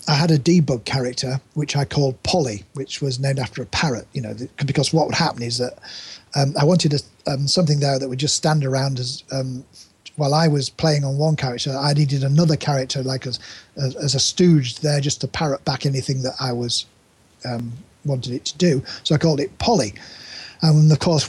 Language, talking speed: English, 215 wpm